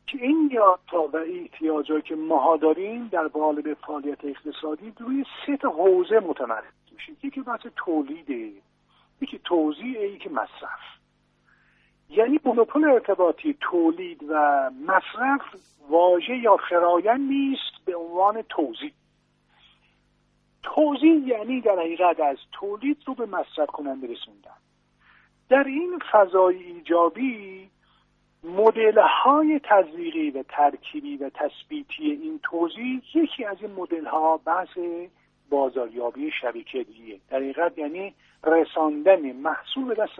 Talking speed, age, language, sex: 115 wpm, 50-69, Persian, male